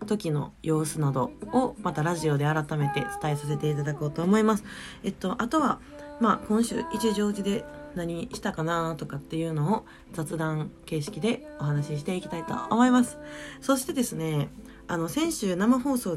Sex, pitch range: female, 155-235 Hz